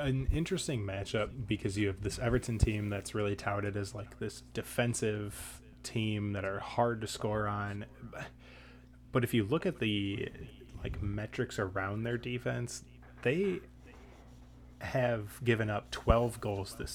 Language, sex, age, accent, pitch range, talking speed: English, male, 20-39, American, 100-120 Hz, 145 wpm